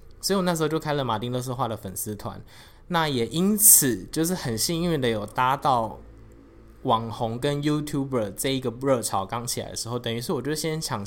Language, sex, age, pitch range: Chinese, male, 20-39, 110-150 Hz